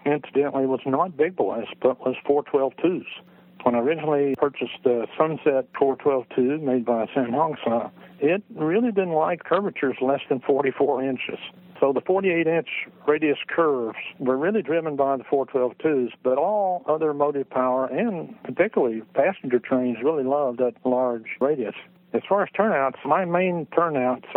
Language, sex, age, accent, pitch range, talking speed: English, male, 60-79, American, 125-145 Hz, 150 wpm